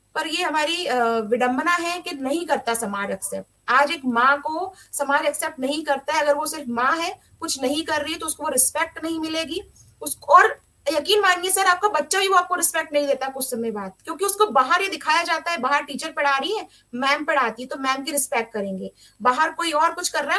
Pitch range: 275-330 Hz